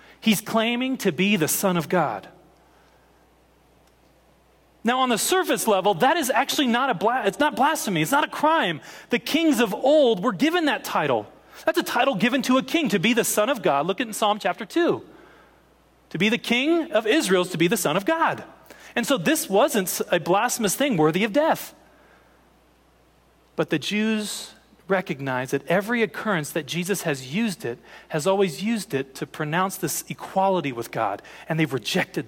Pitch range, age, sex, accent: 155-225 Hz, 40-59, male, American